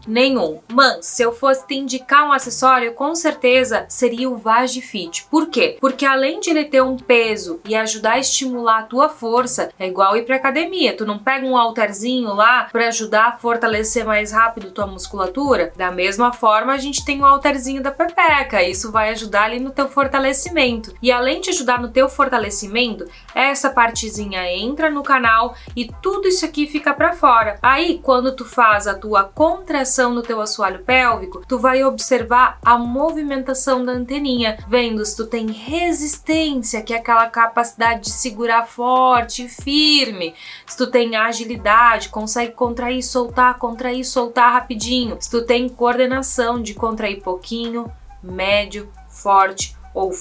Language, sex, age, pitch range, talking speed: Portuguese, female, 20-39, 220-270 Hz, 165 wpm